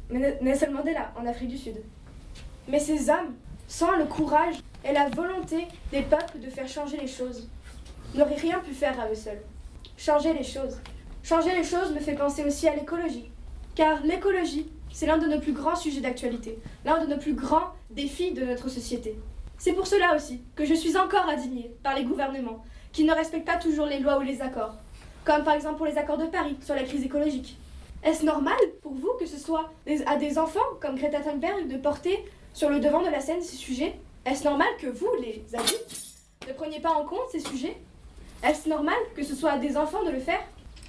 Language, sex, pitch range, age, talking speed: French, female, 270-330 Hz, 20-39, 210 wpm